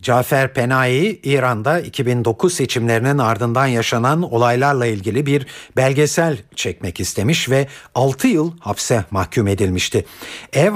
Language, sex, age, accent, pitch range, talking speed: Turkish, male, 50-69, native, 110-160 Hz, 110 wpm